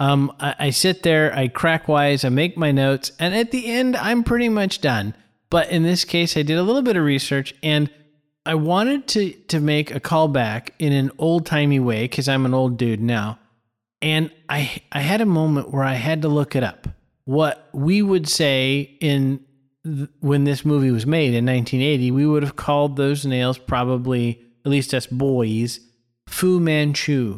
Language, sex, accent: English, male, American